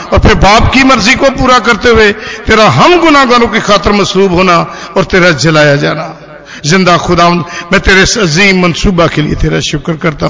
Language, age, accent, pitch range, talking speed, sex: Hindi, 50-69, native, 170-220 Hz, 180 wpm, male